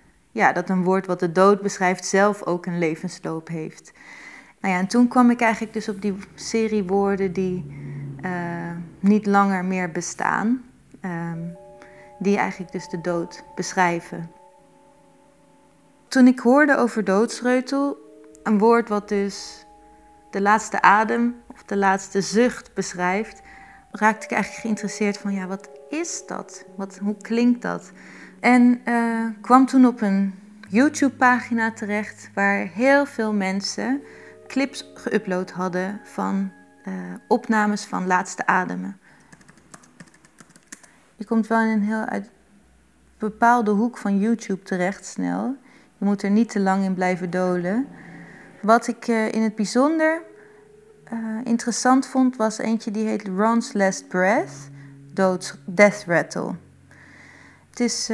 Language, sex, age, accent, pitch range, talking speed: Dutch, female, 30-49, Dutch, 185-235 Hz, 130 wpm